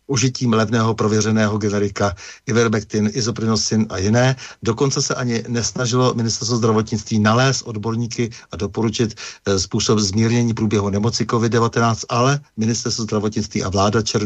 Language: Czech